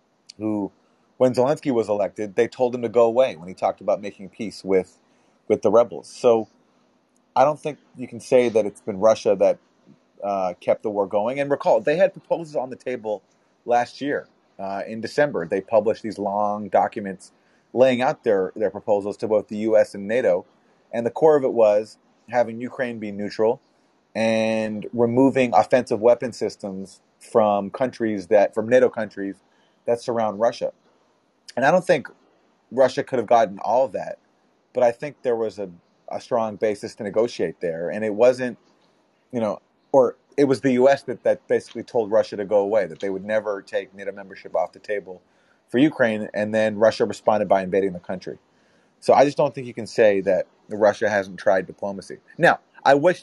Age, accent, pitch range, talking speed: 30-49, American, 100-125 Hz, 190 wpm